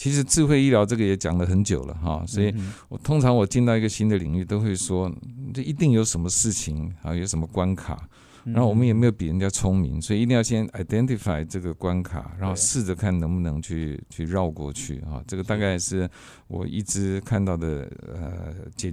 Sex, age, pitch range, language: male, 50-69, 90-115 Hz, Chinese